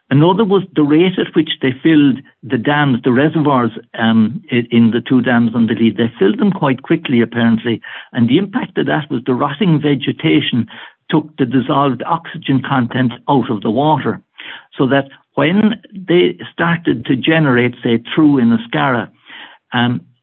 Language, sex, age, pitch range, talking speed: English, male, 60-79, 120-160 Hz, 170 wpm